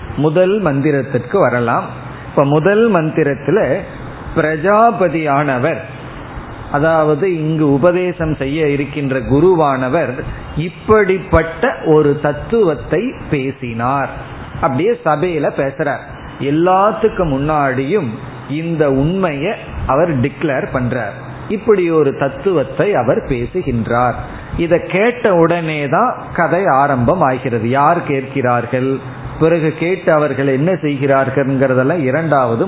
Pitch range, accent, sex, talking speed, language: 135-165 Hz, native, male, 70 wpm, Tamil